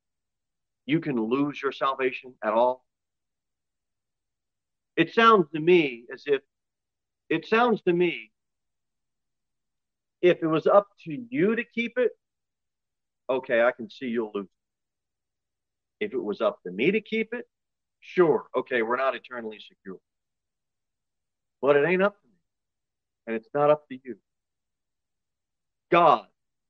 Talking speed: 135 wpm